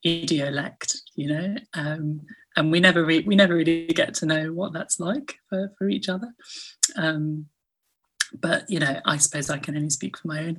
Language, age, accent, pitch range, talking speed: English, 30-49, British, 150-200 Hz, 195 wpm